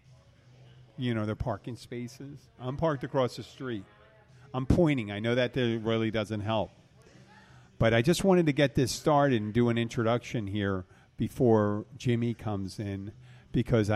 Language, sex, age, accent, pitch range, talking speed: English, male, 50-69, American, 105-125 Hz, 160 wpm